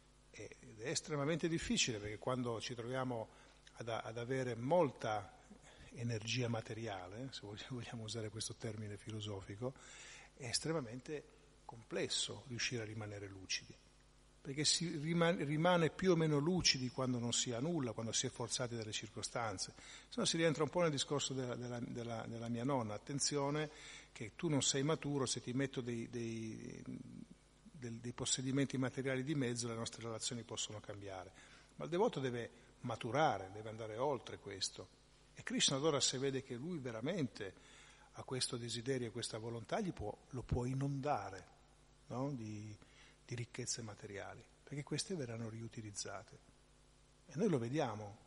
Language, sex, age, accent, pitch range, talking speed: Italian, male, 50-69, native, 115-140 Hz, 150 wpm